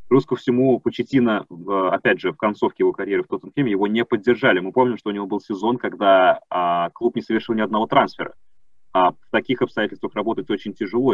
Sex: male